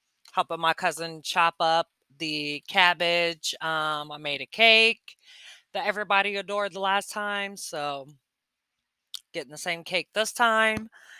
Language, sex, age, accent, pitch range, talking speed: English, female, 20-39, American, 150-175 Hz, 135 wpm